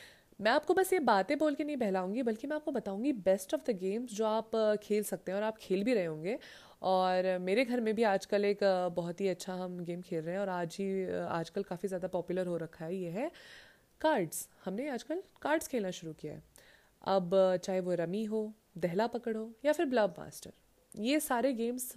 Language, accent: Hindi, native